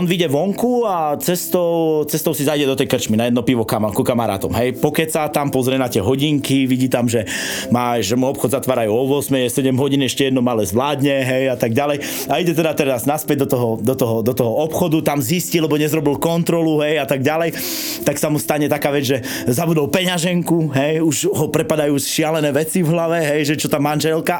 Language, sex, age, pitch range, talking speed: Slovak, male, 30-49, 135-165 Hz, 205 wpm